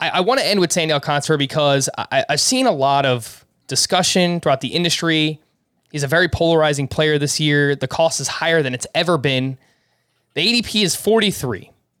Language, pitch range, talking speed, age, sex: English, 135-185 Hz, 180 wpm, 20-39, male